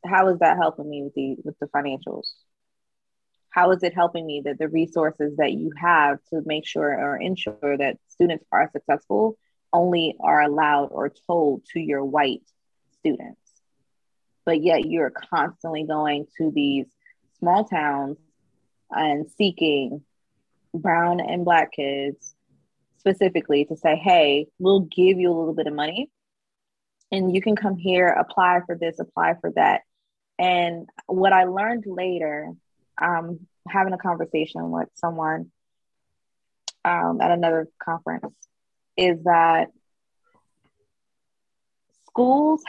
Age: 20-39